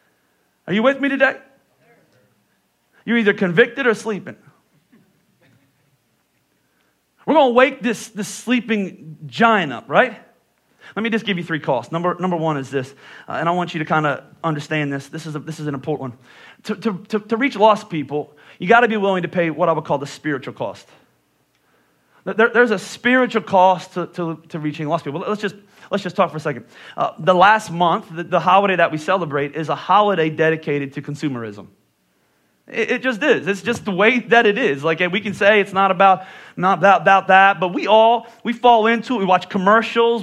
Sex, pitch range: male, 175-225 Hz